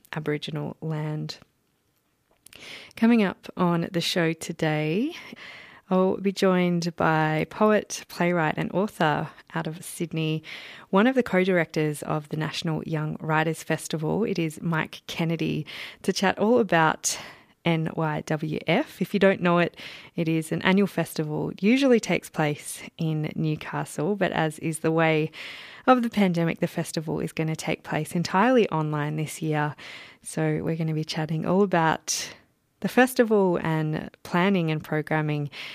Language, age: English, 20-39